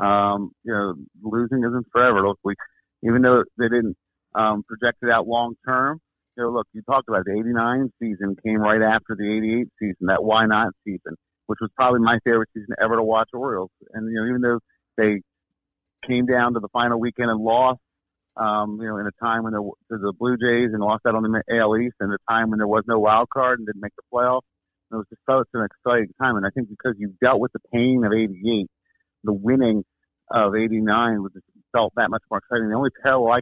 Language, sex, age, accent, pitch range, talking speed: English, male, 50-69, American, 105-120 Hz, 225 wpm